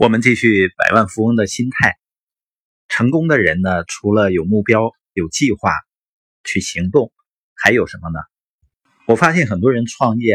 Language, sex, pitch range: Chinese, male, 100-140 Hz